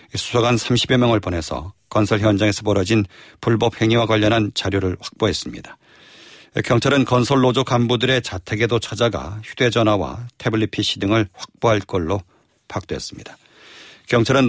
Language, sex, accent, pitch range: Korean, male, native, 100-125 Hz